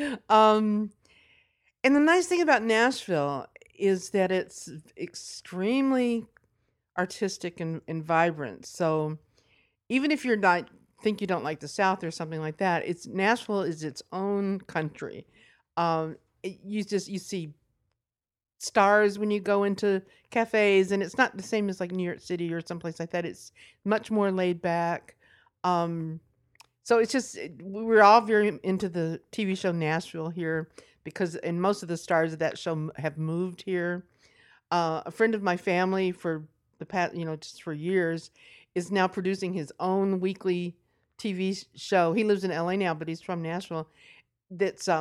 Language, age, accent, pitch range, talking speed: English, 50-69, American, 165-210 Hz, 165 wpm